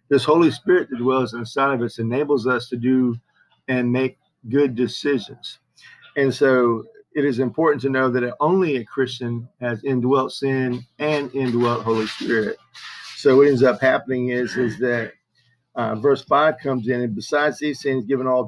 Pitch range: 115-130 Hz